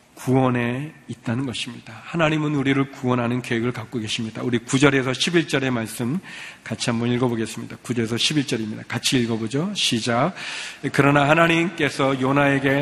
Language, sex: Korean, male